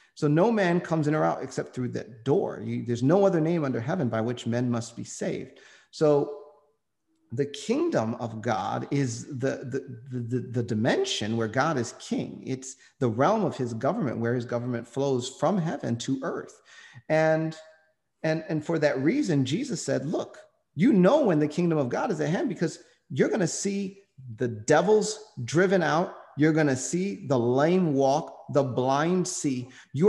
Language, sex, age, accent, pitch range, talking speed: English, male, 40-59, American, 130-195 Hz, 185 wpm